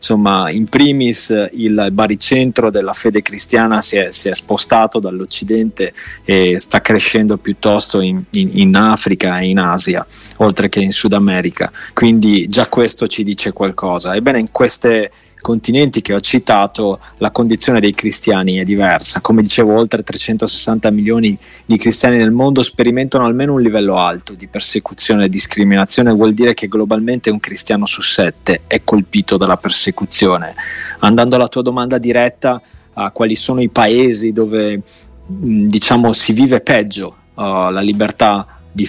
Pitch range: 100-115 Hz